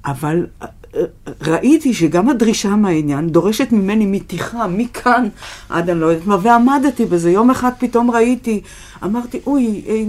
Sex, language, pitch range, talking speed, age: female, Hebrew, 160-235 Hz, 135 wpm, 50-69